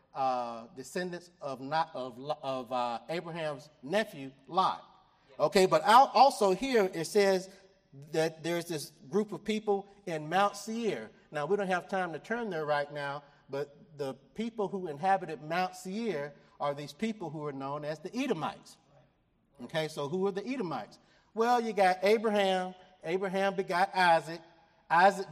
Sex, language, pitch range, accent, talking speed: male, English, 145-205 Hz, American, 155 wpm